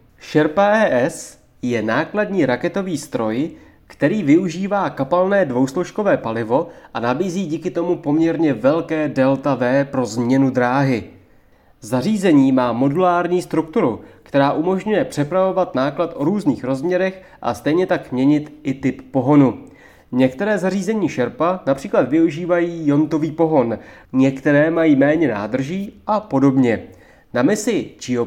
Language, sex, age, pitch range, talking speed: Czech, male, 30-49, 130-185 Hz, 120 wpm